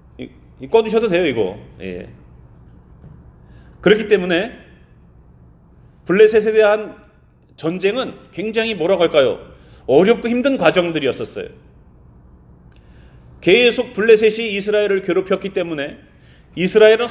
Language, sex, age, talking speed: English, male, 30-49, 75 wpm